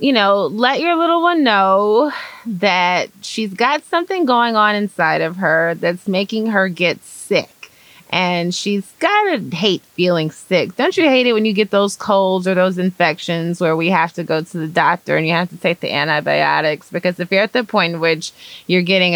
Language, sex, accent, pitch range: English, female, American, 155-205 Hz